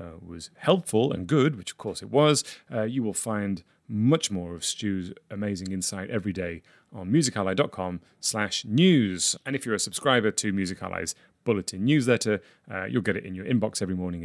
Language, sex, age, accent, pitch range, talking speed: English, male, 30-49, British, 100-130 Hz, 190 wpm